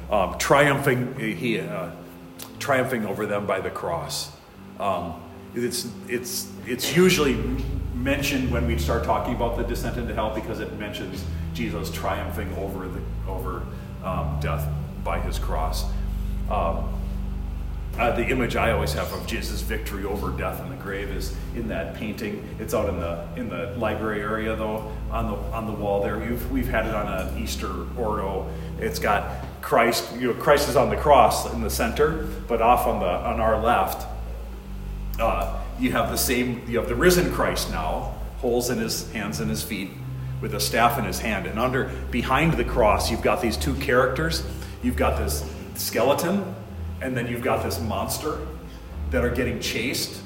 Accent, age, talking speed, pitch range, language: American, 40-59, 180 wpm, 75-115 Hz, English